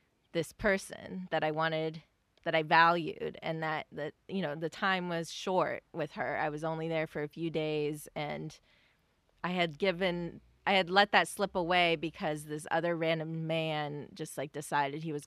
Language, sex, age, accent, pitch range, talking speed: English, female, 20-39, American, 150-190 Hz, 185 wpm